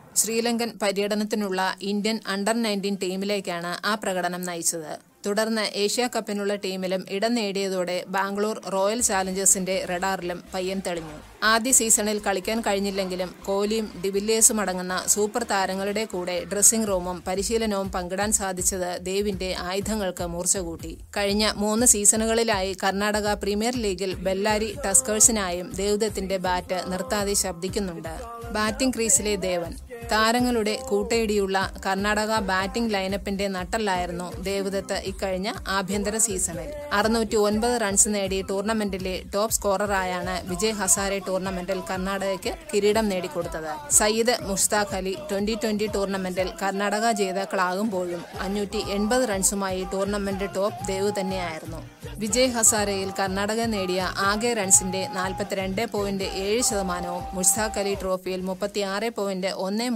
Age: 20-39